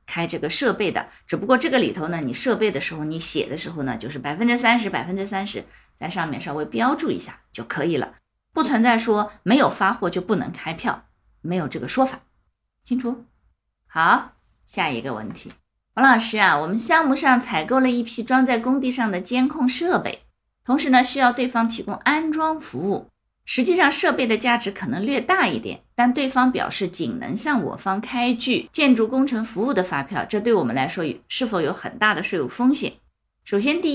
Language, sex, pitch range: Chinese, female, 185-255 Hz